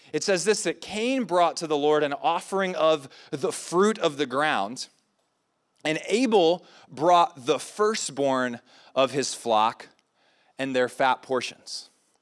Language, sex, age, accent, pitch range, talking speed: English, male, 20-39, American, 160-210 Hz, 140 wpm